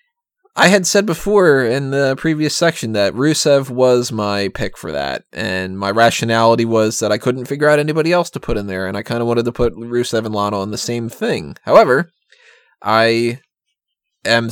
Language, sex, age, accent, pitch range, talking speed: English, male, 20-39, American, 110-155 Hz, 195 wpm